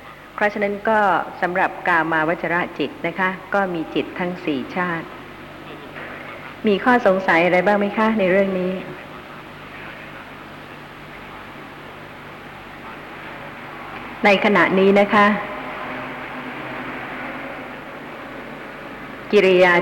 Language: Thai